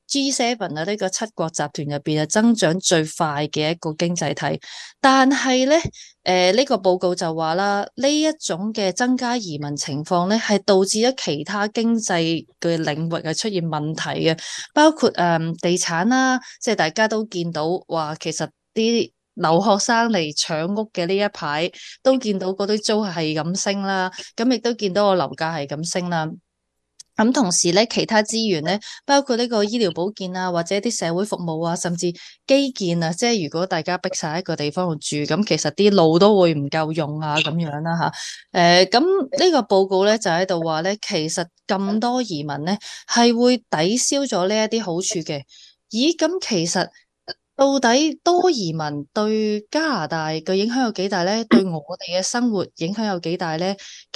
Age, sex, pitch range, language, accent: 20-39, female, 165-225 Hz, Chinese, native